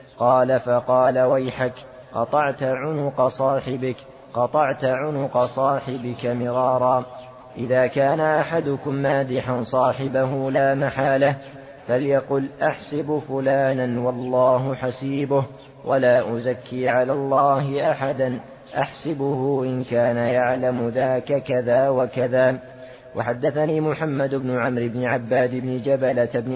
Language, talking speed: Arabic, 95 wpm